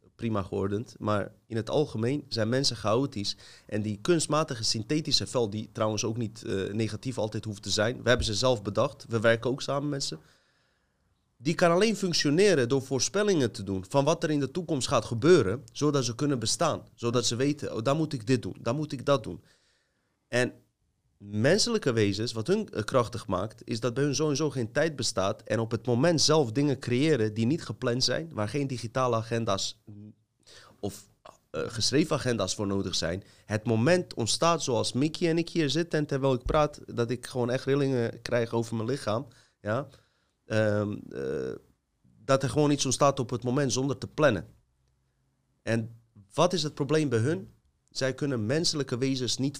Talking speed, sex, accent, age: 185 wpm, male, Dutch, 30-49